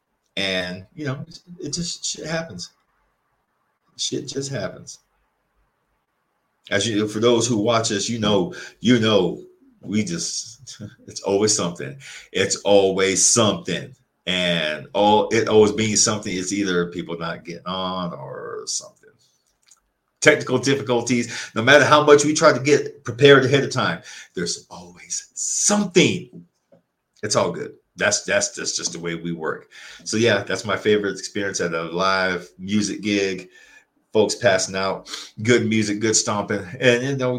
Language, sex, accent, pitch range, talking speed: English, male, American, 95-125 Hz, 150 wpm